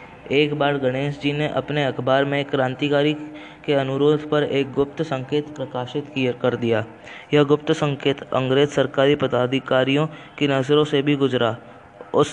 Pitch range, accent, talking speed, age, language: 130-150 Hz, native, 150 wpm, 20-39, Hindi